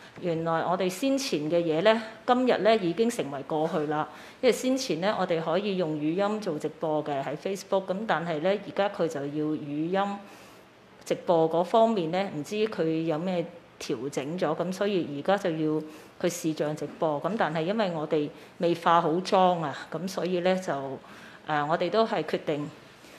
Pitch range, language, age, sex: 160-200 Hz, Chinese, 30-49, female